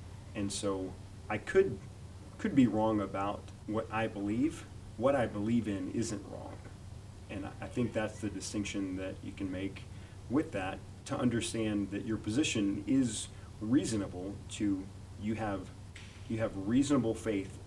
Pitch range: 95-110 Hz